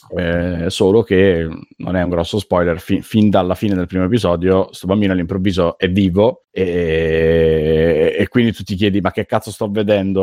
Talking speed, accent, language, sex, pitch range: 180 wpm, native, Italian, male, 90-100 Hz